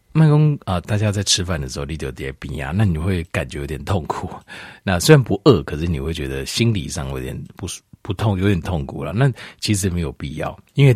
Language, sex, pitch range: Chinese, male, 70-110 Hz